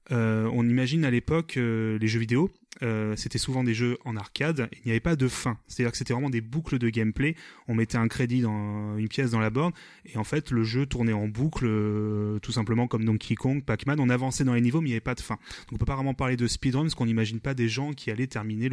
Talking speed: 270 wpm